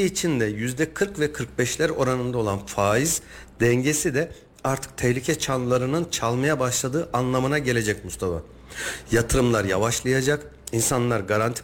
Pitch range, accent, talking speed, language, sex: 115-145 Hz, native, 115 wpm, Turkish, male